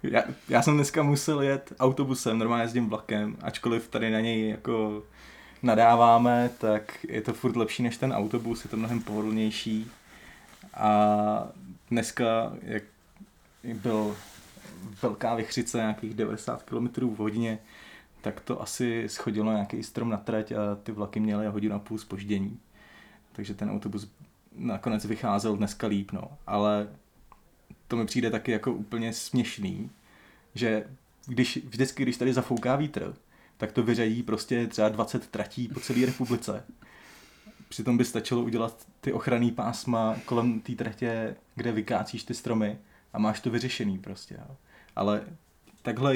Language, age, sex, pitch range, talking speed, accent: Czech, 20-39, male, 105-120 Hz, 140 wpm, native